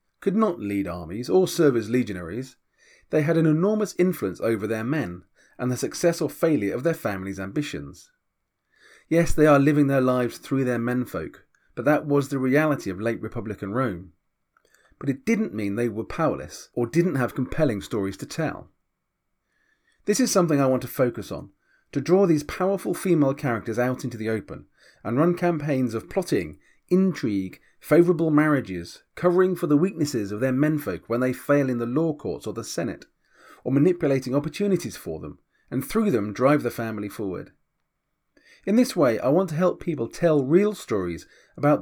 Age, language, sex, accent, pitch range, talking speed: 40-59, English, male, British, 110-165 Hz, 180 wpm